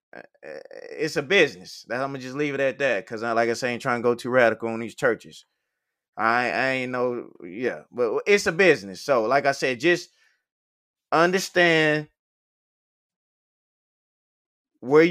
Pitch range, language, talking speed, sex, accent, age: 125-155 Hz, English, 165 wpm, male, American, 20-39